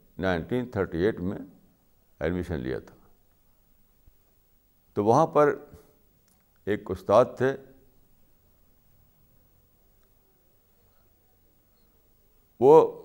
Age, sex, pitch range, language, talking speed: 60-79, male, 100-145 Hz, Urdu, 60 wpm